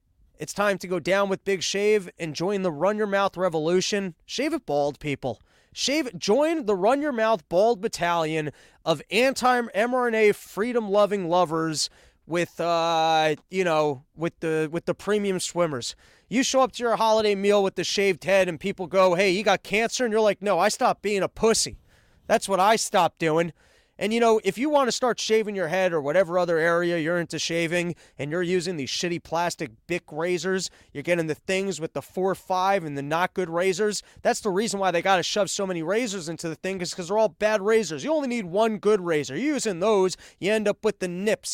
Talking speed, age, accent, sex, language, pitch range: 215 wpm, 30-49, American, male, English, 170-215 Hz